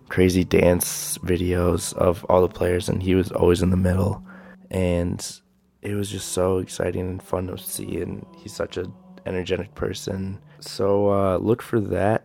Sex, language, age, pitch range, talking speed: male, English, 20-39, 85-95 Hz, 170 wpm